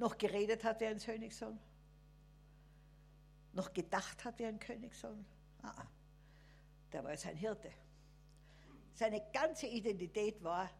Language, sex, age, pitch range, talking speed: German, female, 60-79, 150-225 Hz, 120 wpm